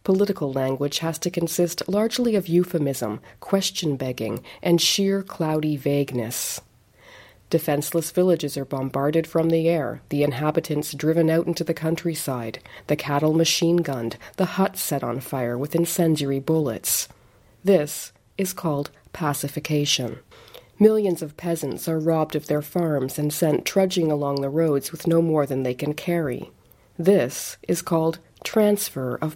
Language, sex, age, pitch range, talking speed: English, female, 40-59, 145-175 Hz, 140 wpm